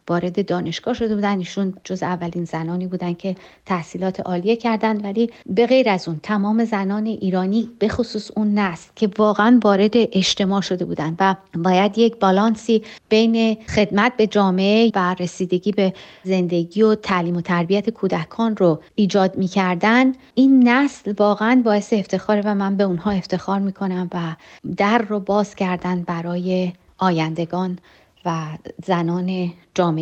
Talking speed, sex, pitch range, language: 140 wpm, female, 180-215 Hz, Persian